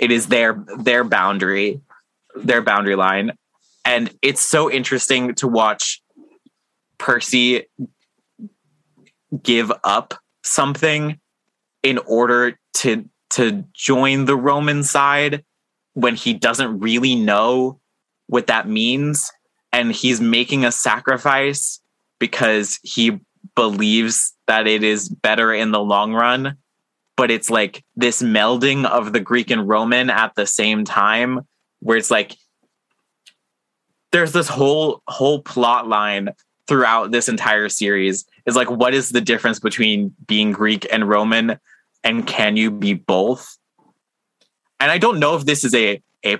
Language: English